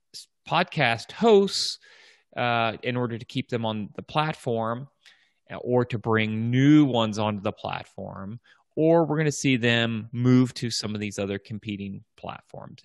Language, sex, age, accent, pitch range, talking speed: English, male, 30-49, American, 105-135 Hz, 155 wpm